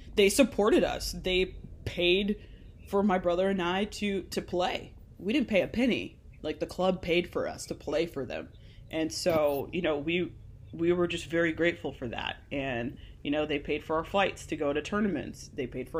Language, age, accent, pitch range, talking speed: English, 20-39, American, 145-175 Hz, 205 wpm